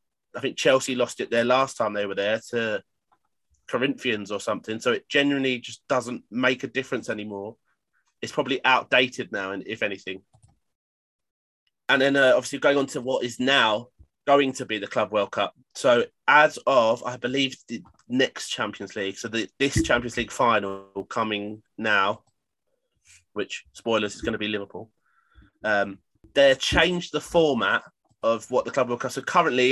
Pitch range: 105-130 Hz